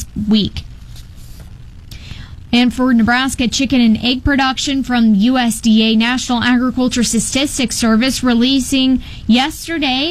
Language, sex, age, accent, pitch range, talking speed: English, female, 10-29, American, 215-270 Hz, 95 wpm